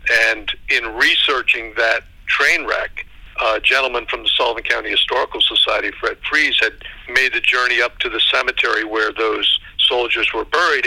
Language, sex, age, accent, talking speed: English, male, 50-69, American, 160 wpm